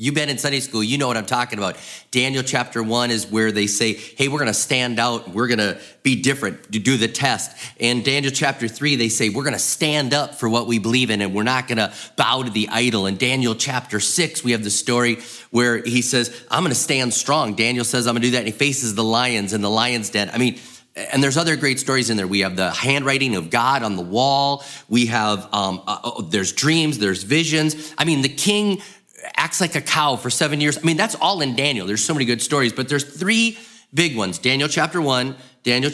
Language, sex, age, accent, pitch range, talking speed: English, male, 30-49, American, 110-140 Hz, 235 wpm